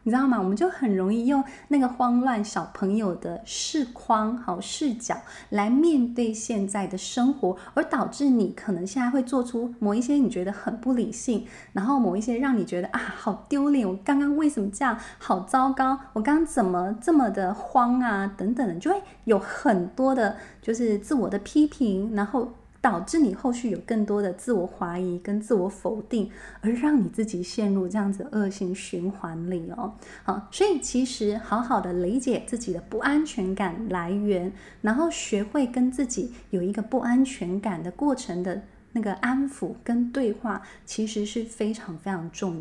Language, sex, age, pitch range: Chinese, female, 20-39, 195-255 Hz